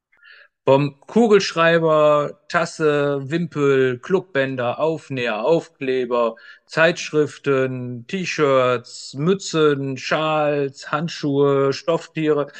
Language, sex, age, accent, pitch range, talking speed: German, male, 50-69, German, 135-165 Hz, 60 wpm